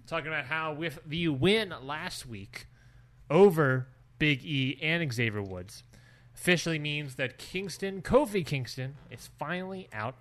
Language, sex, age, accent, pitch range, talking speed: English, male, 20-39, American, 120-150 Hz, 135 wpm